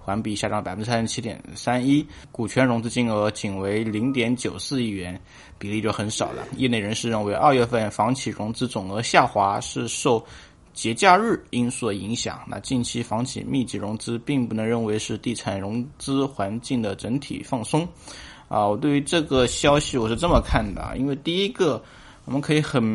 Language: Chinese